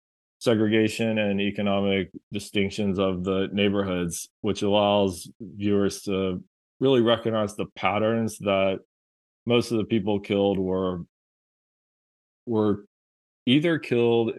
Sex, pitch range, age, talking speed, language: male, 95-110 Hz, 20-39, 105 wpm, English